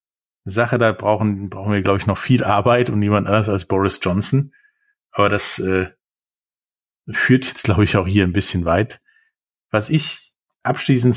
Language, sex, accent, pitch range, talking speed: German, male, German, 100-120 Hz, 165 wpm